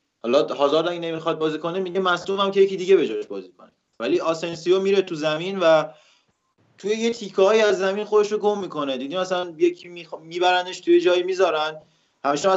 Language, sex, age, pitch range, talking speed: Persian, male, 30-49, 145-185 Hz, 170 wpm